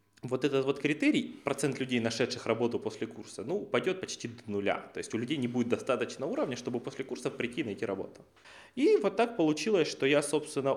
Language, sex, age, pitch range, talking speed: Russian, male, 20-39, 120-180 Hz, 205 wpm